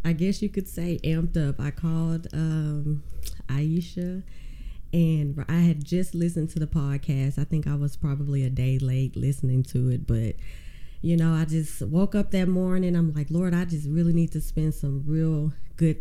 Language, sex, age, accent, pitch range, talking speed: English, female, 20-39, American, 145-180 Hz, 190 wpm